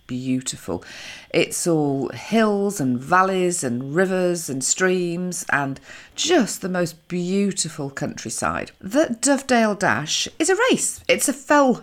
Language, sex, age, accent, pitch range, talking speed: English, female, 40-59, British, 145-215 Hz, 125 wpm